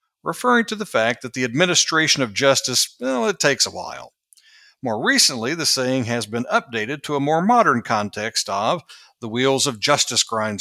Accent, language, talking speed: American, English, 180 wpm